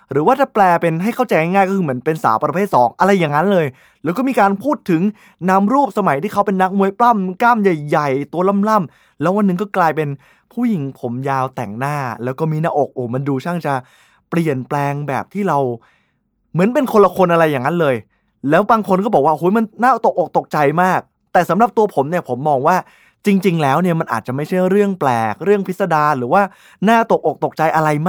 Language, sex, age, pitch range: Thai, male, 20-39, 140-200 Hz